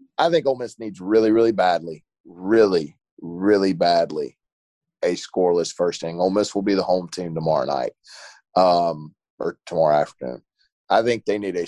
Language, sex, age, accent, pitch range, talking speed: English, male, 30-49, American, 85-110 Hz, 170 wpm